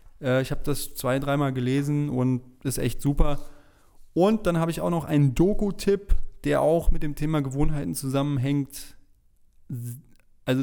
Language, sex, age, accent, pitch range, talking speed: German, male, 20-39, German, 125-155 Hz, 145 wpm